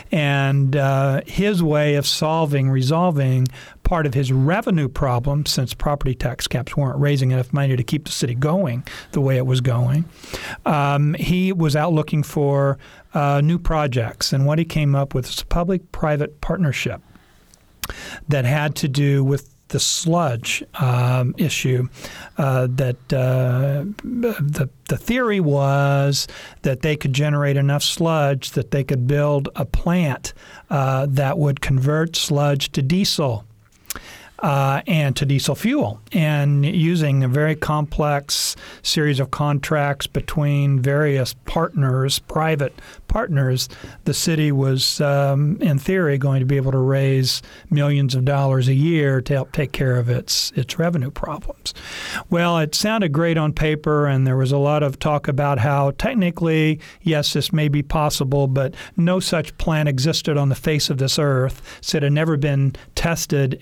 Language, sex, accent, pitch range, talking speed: English, male, American, 135-155 Hz, 155 wpm